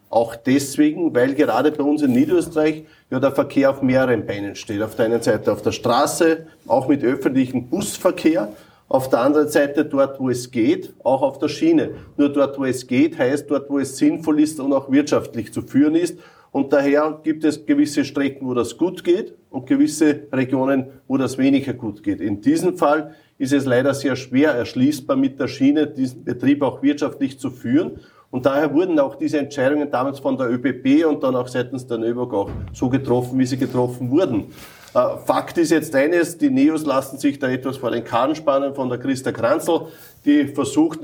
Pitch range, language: 130-165 Hz, German